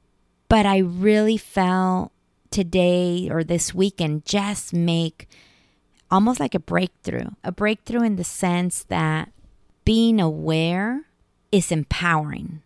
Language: English